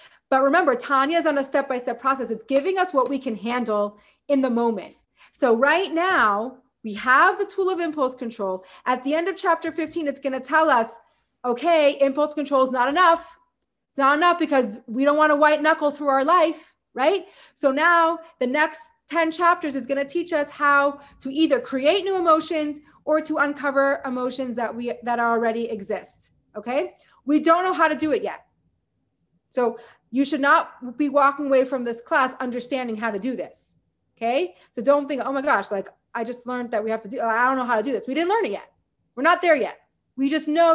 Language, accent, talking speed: English, American, 210 wpm